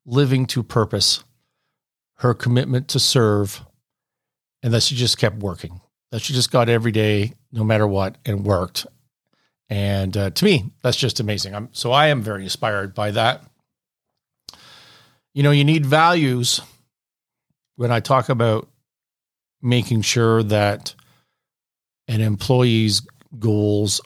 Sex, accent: male, American